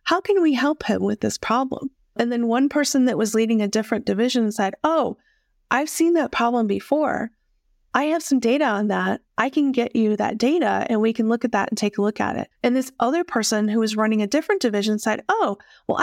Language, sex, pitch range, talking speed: English, female, 215-265 Hz, 230 wpm